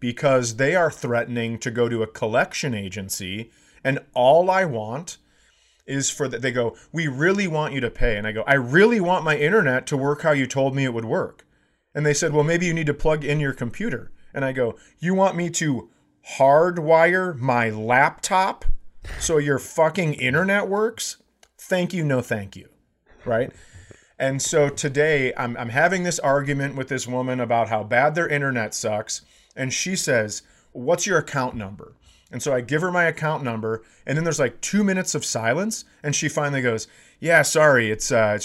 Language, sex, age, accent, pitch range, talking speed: English, male, 30-49, American, 120-190 Hz, 195 wpm